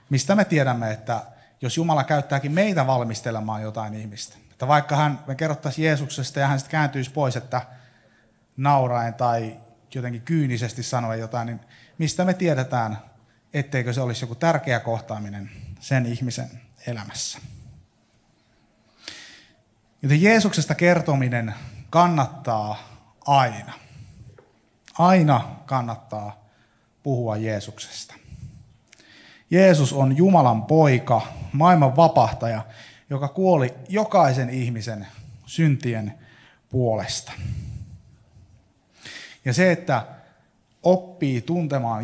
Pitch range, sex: 115-145 Hz, male